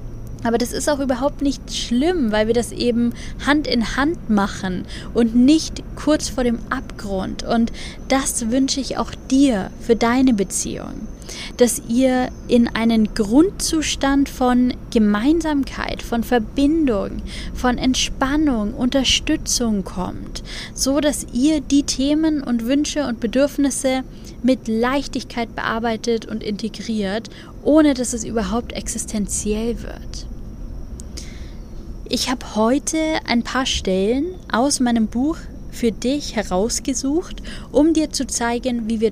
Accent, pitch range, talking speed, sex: German, 225-270 Hz, 125 wpm, female